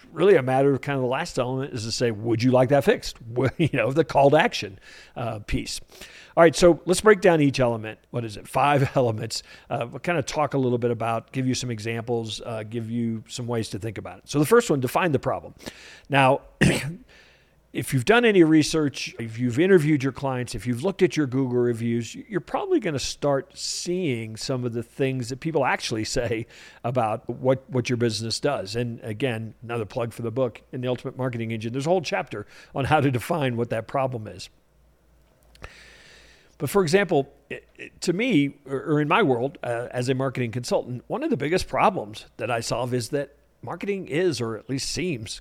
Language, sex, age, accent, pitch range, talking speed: English, male, 50-69, American, 115-145 Hz, 210 wpm